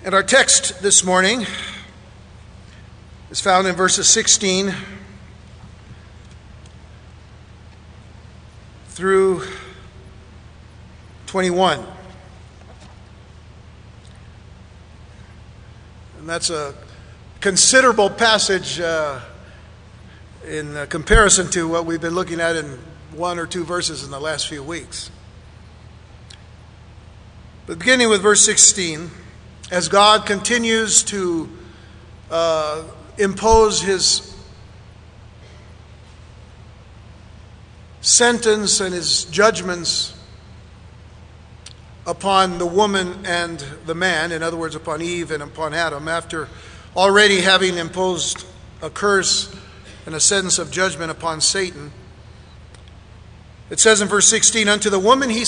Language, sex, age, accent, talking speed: English, male, 50-69, American, 95 wpm